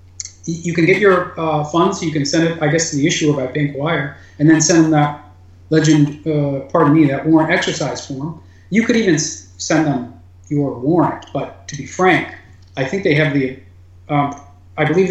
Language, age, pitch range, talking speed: English, 30-49, 130-165 Hz, 200 wpm